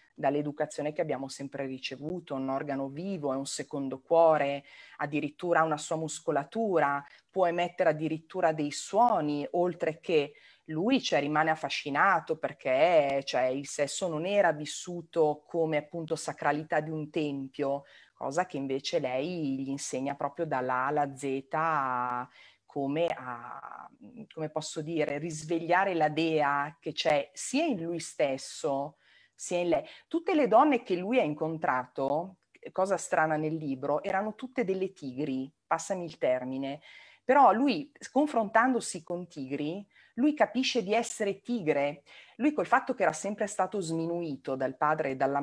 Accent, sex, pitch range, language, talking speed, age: native, female, 145-190 Hz, Italian, 140 wpm, 30-49